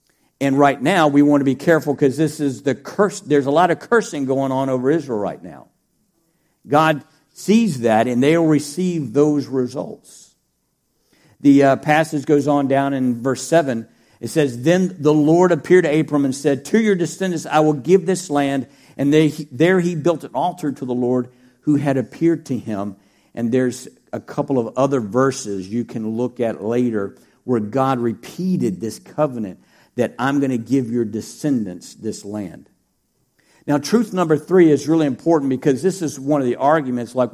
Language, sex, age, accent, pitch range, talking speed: English, male, 50-69, American, 130-175 Hz, 185 wpm